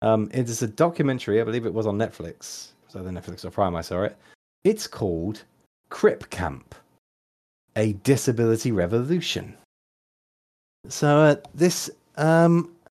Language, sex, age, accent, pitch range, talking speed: English, male, 40-59, British, 105-140 Hz, 140 wpm